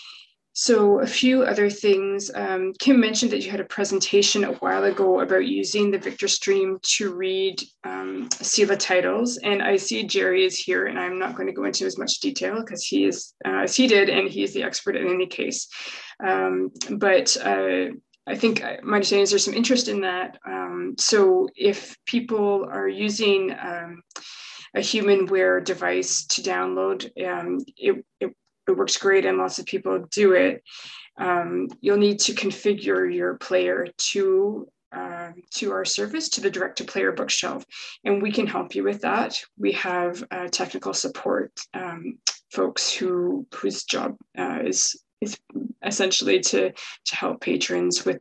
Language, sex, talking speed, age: English, female, 175 wpm, 20-39